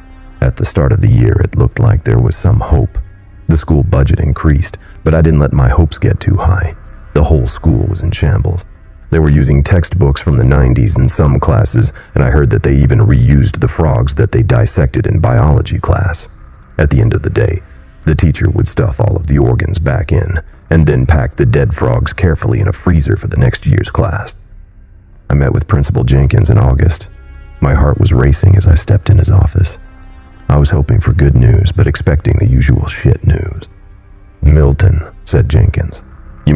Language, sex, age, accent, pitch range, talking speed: English, male, 40-59, American, 75-100 Hz, 200 wpm